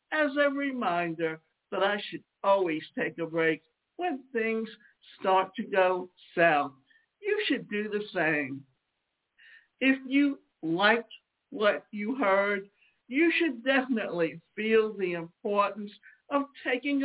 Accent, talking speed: American, 125 wpm